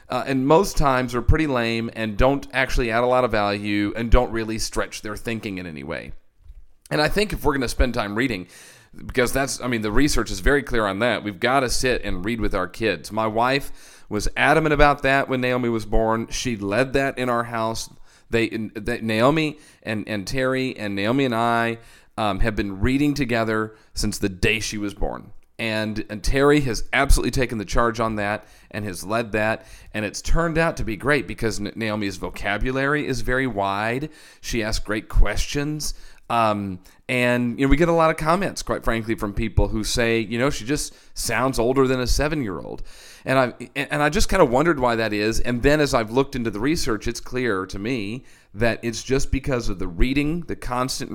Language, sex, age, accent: English, male, 40-59, American